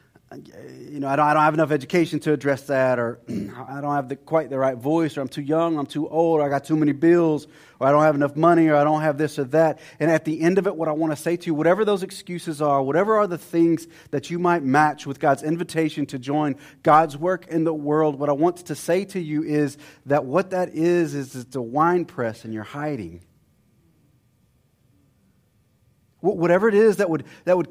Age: 30-49